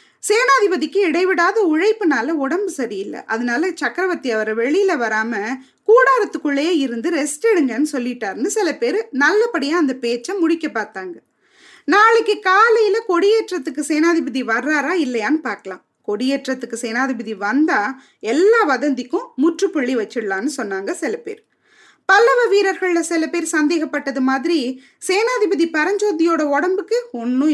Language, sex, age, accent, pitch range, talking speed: Tamil, female, 20-39, native, 245-365 Hz, 105 wpm